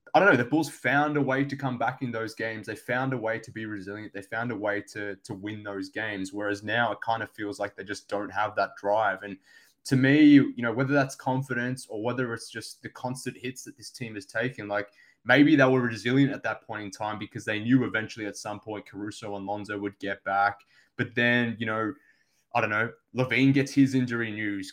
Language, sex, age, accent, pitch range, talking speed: English, male, 20-39, Australian, 110-130 Hz, 240 wpm